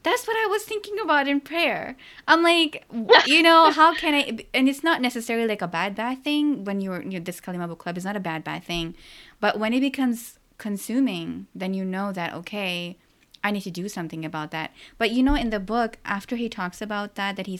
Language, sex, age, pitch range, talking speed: English, female, 20-39, 175-230 Hz, 225 wpm